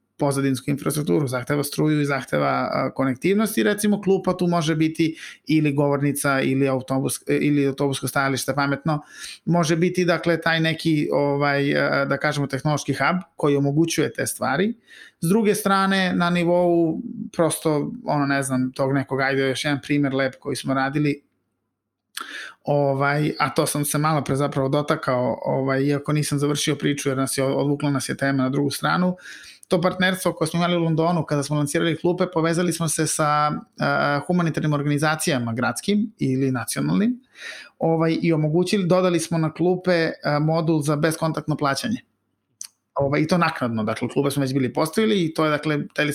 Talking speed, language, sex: 155 wpm, English, male